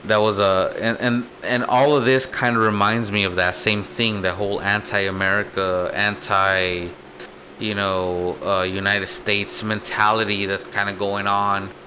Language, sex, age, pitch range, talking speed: English, male, 20-39, 95-110 Hz, 160 wpm